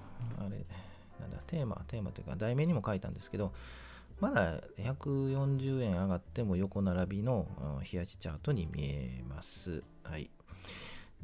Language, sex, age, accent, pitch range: Japanese, male, 40-59, native, 85-110 Hz